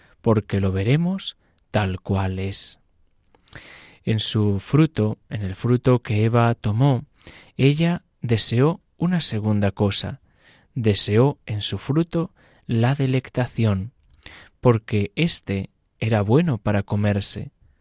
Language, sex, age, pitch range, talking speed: Spanish, male, 20-39, 105-135 Hz, 110 wpm